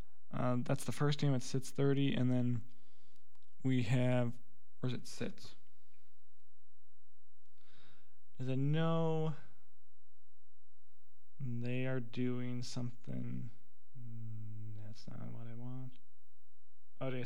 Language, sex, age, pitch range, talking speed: English, male, 20-39, 120-130 Hz, 100 wpm